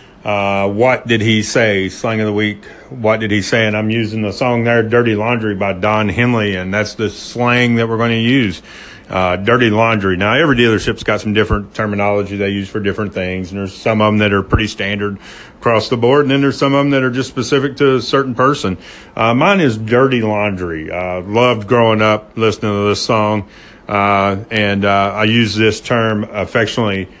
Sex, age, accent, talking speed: male, 40-59, American, 210 wpm